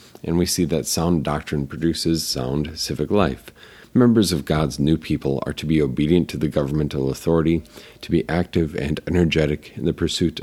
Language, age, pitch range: English, 40-59, 75-85 Hz